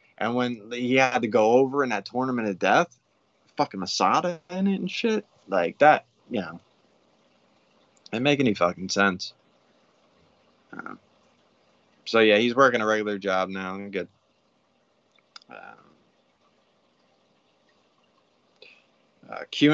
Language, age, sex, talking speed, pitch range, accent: English, 20-39, male, 115 wpm, 100-140 Hz, American